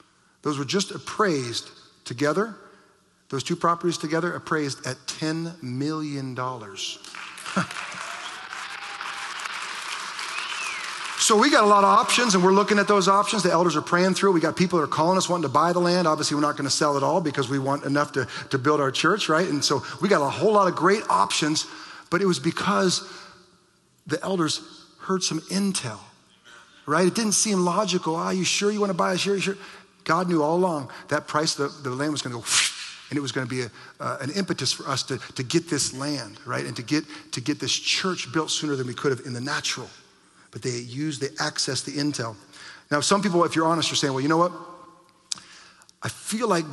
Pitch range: 140-180 Hz